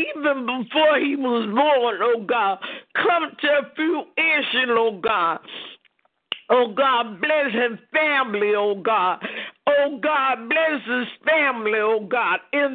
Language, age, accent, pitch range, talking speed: English, 50-69, American, 225-290 Hz, 135 wpm